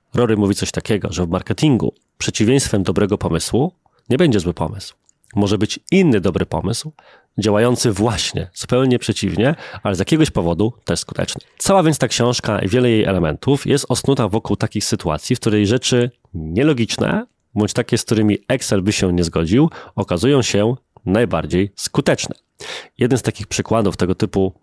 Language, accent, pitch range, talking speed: Polish, native, 100-130 Hz, 160 wpm